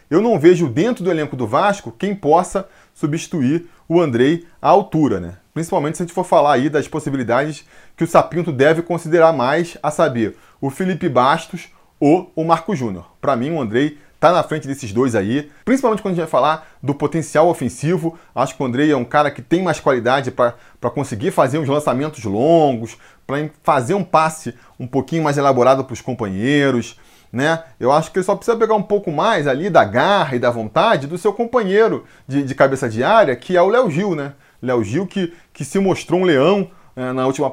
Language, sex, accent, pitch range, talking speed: Portuguese, male, Brazilian, 130-175 Hz, 205 wpm